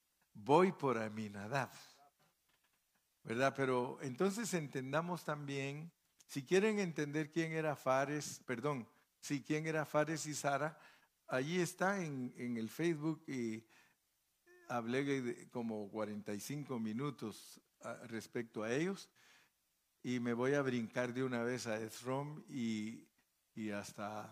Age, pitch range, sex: 50-69, 115-150 Hz, male